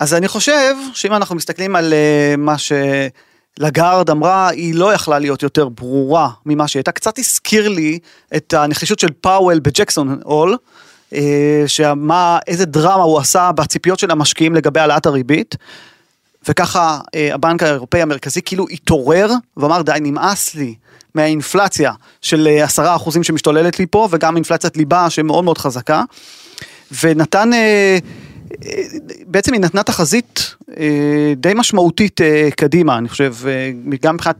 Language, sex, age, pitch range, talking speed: Hebrew, male, 30-49, 150-190 Hz, 125 wpm